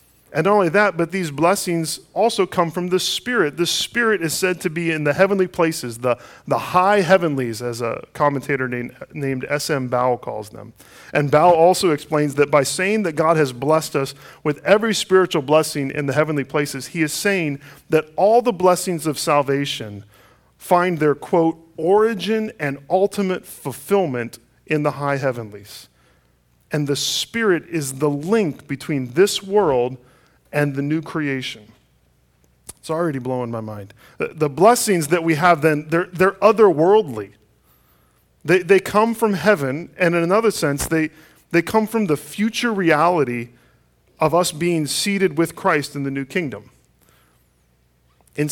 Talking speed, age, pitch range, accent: 160 wpm, 40-59, 135-185 Hz, American